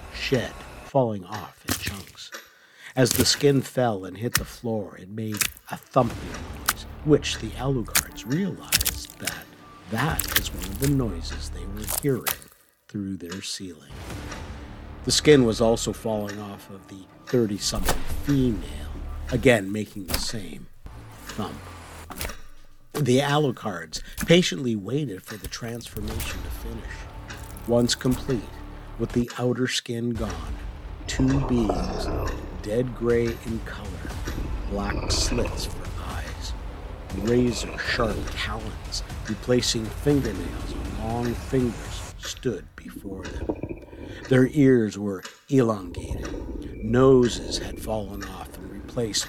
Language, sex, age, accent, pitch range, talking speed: English, male, 50-69, American, 90-120 Hz, 120 wpm